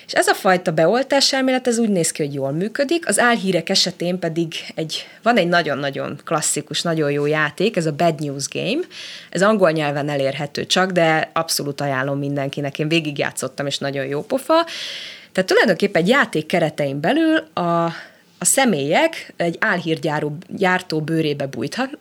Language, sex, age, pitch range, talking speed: Hungarian, female, 20-39, 150-200 Hz, 155 wpm